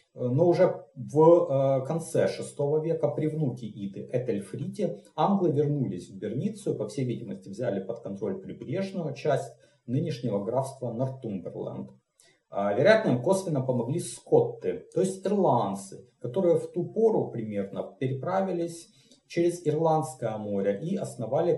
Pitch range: 115-160 Hz